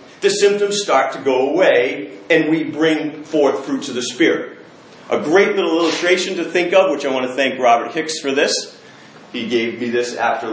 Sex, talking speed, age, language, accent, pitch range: male, 200 wpm, 40-59, English, American, 115-185 Hz